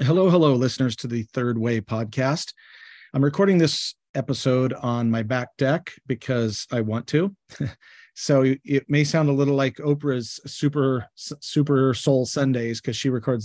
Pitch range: 125-150 Hz